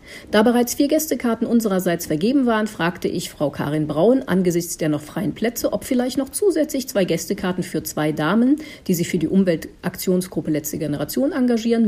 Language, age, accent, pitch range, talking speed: German, 50-69, German, 175-240 Hz, 170 wpm